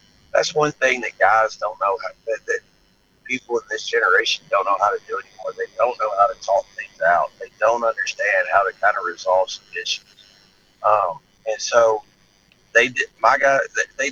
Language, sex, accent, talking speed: English, male, American, 190 wpm